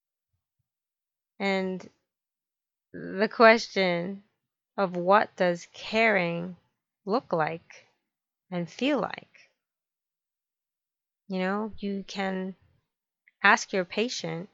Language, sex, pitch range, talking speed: English, female, 175-205 Hz, 80 wpm